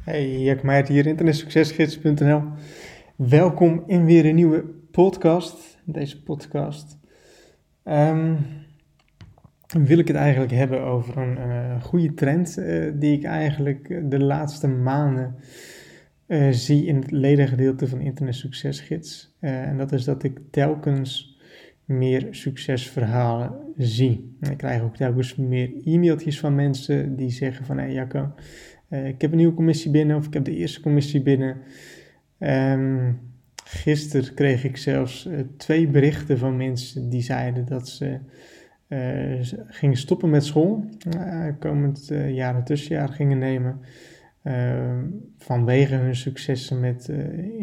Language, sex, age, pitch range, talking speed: Dutch, male, 20-39, 130-150 Hz, 140 wpm